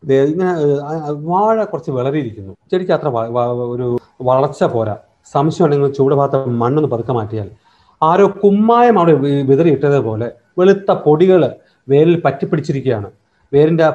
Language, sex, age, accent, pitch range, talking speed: Malayalam, male, 40-59, native, 130-170 Hz, 115 wpm